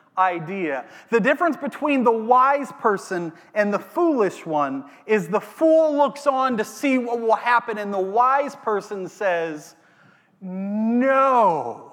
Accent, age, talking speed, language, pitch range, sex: American, 30-49, 135 wpm, English, 175-240 Hz, male